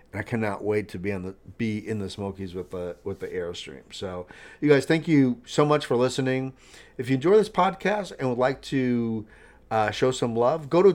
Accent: American